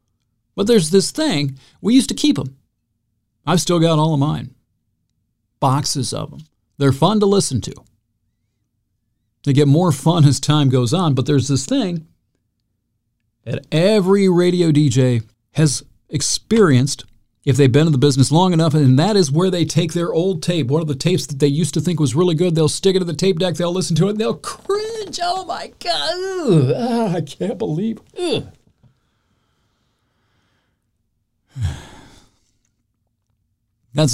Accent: American